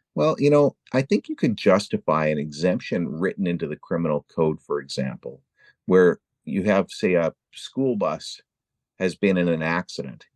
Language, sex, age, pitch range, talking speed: English, male, 50-69, 85-140 Hz, 170 wpm